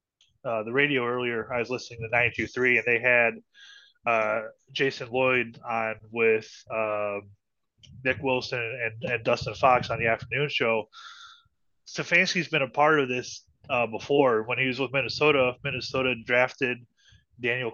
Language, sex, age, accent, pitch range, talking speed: English, male, 20-39, American, 115-135 Hz, 150 wpm